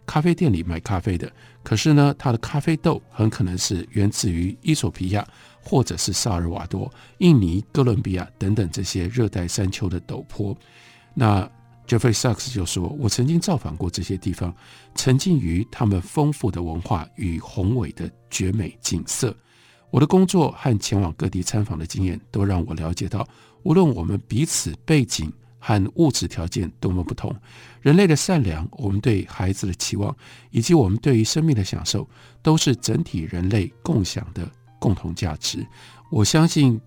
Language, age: Chinese, 50-69